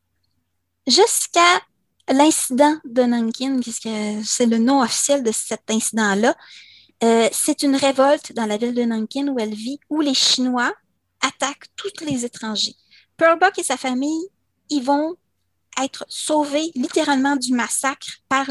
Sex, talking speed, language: female, 145 wpm, French